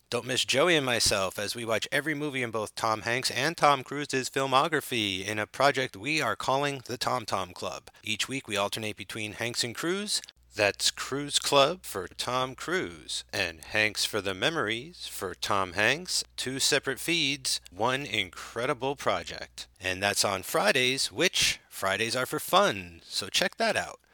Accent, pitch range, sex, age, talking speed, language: American, 100-135 Hz, male, 40-59, 170 wpm, English